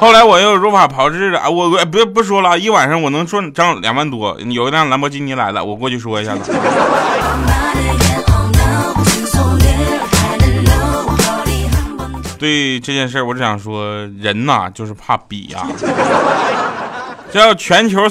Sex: male